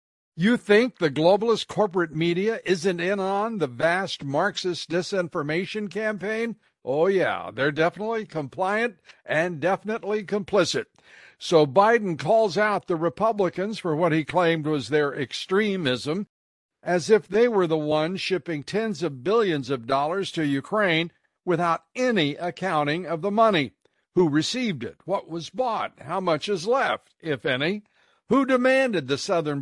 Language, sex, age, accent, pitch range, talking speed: English, male, 60-79, American, 160-210 Hz, 145 wpm